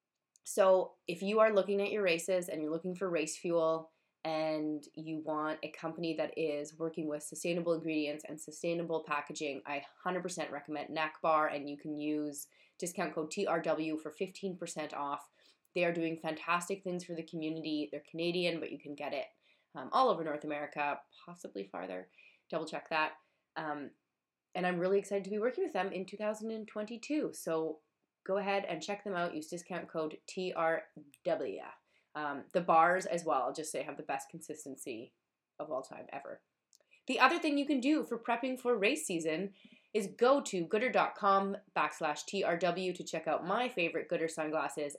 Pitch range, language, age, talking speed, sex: 155-195 Hz, English, 20-39, 175 wpm, female